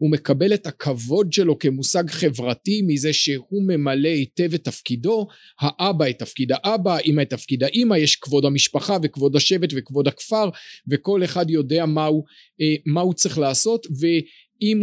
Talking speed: 155 wpm